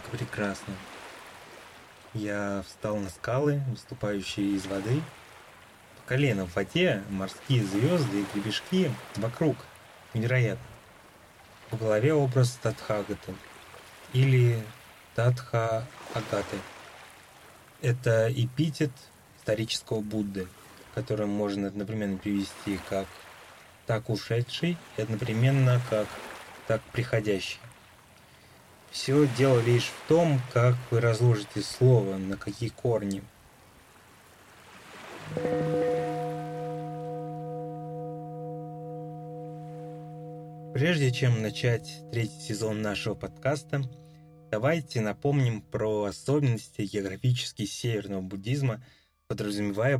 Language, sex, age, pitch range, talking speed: Russian, male, 30-49, 100-140 Hz, 80 wpm